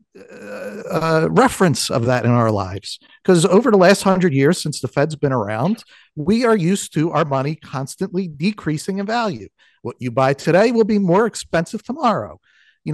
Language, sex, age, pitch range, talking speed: English, male, 50-69, 135-195 Hz, 180 wpm